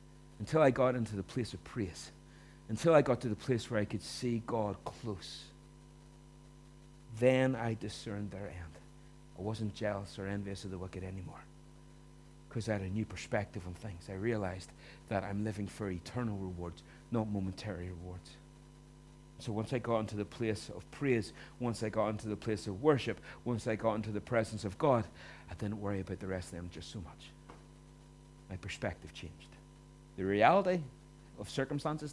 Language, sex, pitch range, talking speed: English, male, 90-115 Hz, 180 wpm